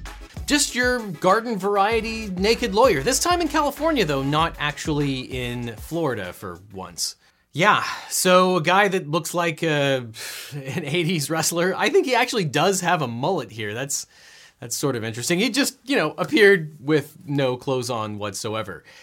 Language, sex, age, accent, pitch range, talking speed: English, male, 30-49, American, 130-195 Hz, 165 wpm